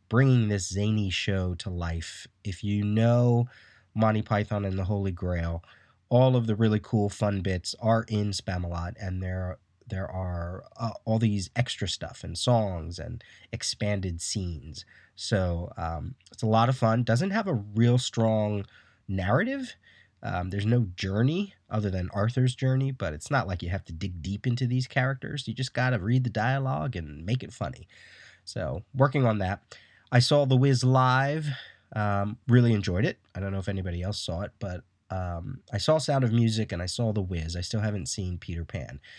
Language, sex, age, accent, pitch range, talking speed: English, male, 30-49, American, 95-125 Hz, 185 wpm